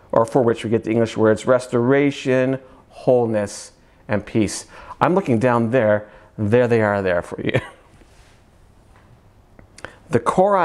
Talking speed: 135 wpm